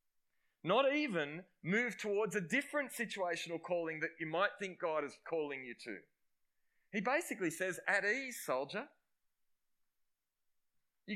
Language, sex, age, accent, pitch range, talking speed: English, male, 20-39, Australian, 160-210 Hz, 130 wpm